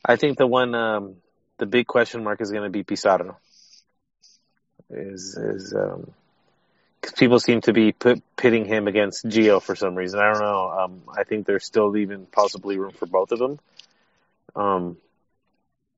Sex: male